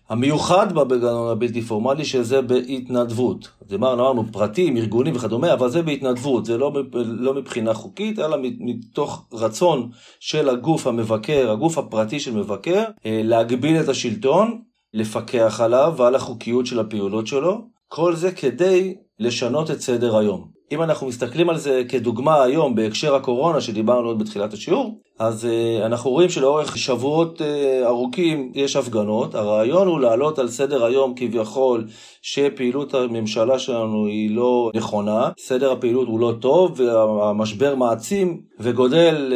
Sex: male